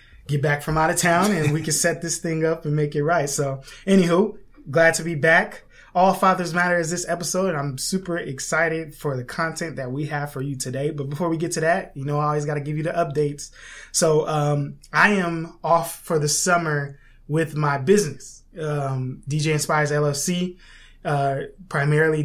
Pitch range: 140-165 Hz